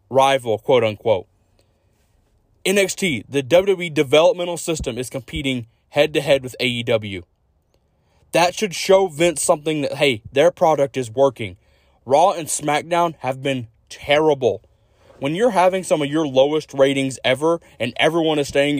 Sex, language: male, English